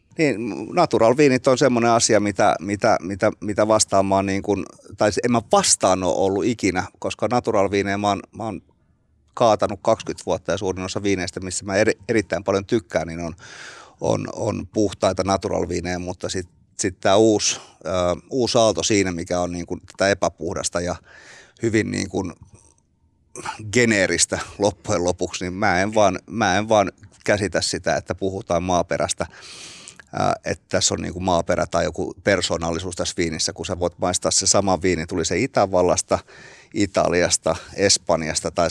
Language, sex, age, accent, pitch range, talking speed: Finnish, male, 30-49, native, 90-105 Hz, 150 wpm